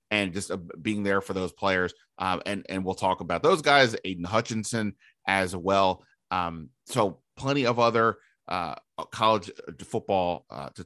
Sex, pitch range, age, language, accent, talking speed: male, 95-115 Hz, 30-49, English, American, 160 wpm